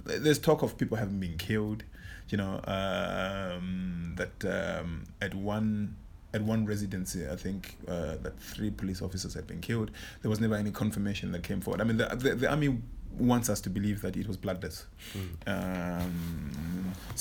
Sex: male